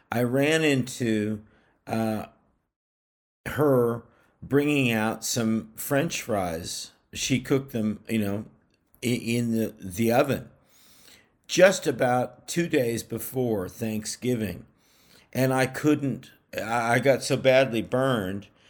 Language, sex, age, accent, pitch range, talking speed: English, male, 50-69, American, 110-135 Hz, 105 wpm